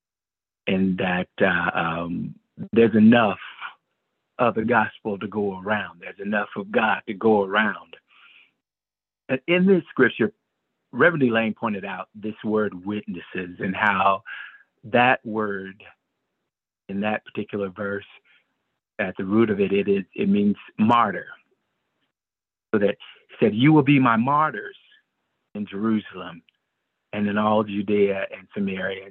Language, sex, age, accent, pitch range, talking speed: English, male, 50-69, American, 100-120 Hz, 130 wpm